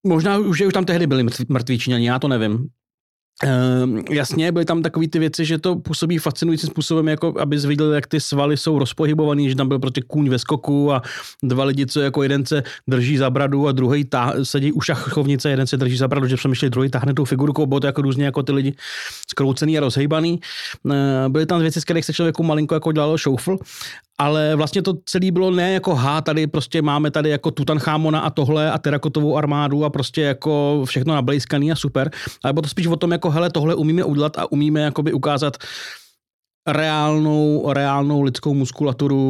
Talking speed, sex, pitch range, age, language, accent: 205 wpm, male, 135-155 Hz, 30-49, Czech, native